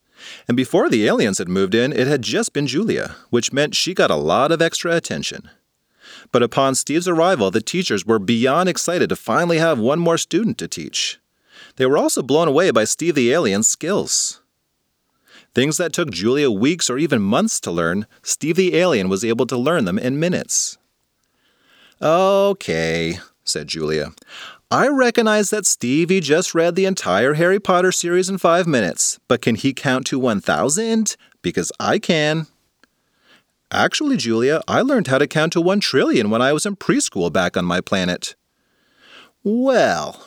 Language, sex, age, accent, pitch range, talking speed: English, male, 30-49, American, 120-190 Hz, 170 wpm